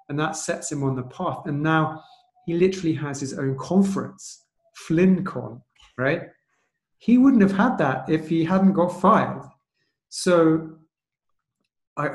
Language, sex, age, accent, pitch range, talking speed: English, male, 30-49, British, 135-165 Hz, 145 wpm